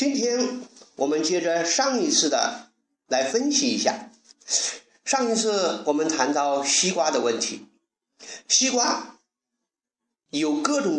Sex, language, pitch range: male, Chinese, 180-260 Hz